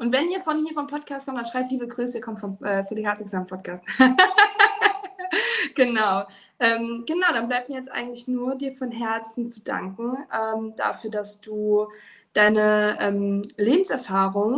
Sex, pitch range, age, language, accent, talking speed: female, 225-270 Hz, 20-39, German, German, 170 wpm